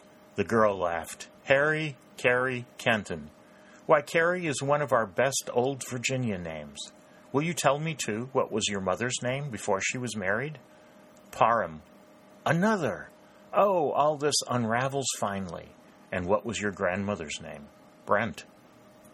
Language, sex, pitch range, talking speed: English, male, 95-130 Hz, 140 wpm